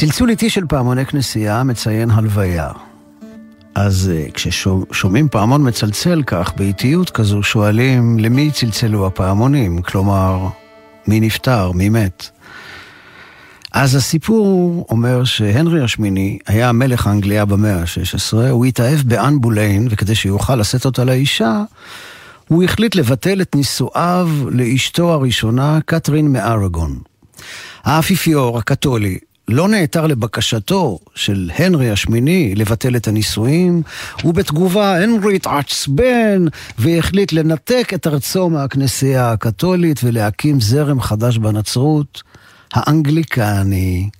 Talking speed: 100 wpm